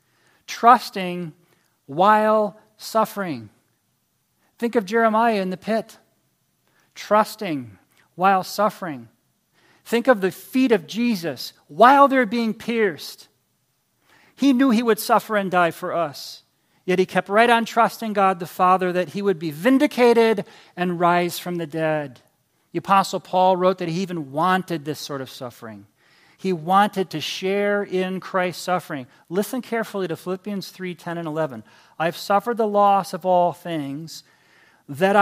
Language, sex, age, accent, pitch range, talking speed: English, male, 40-59, American, 165-205 Hz, 145 wpm